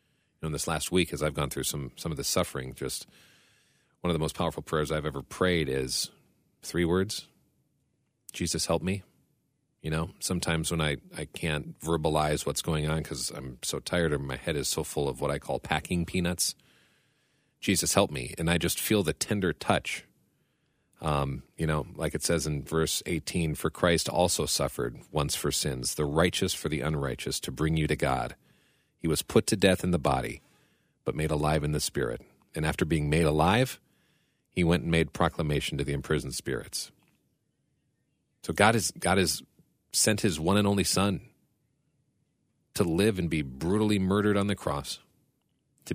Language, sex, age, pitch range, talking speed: English, male, 40-59, 75-90 Hz, 185 wpm